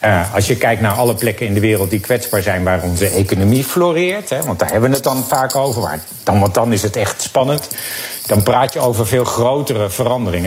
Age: 50-69